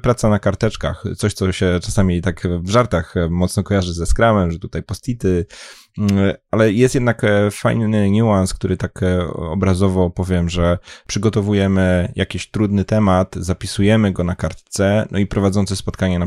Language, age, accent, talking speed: Polish, 20-39, native, 150 wpm